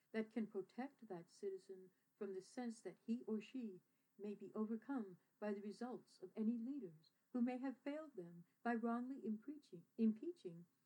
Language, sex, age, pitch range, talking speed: English, female, 60-79, 190-230 Hz, 165 wpm